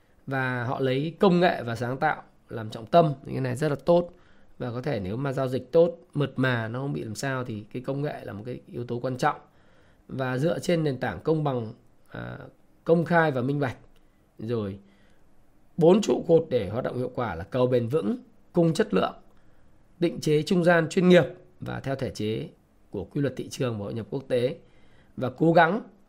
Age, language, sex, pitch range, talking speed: 20-39, Vietnamese, male, 120-165 Hz, 220 wpm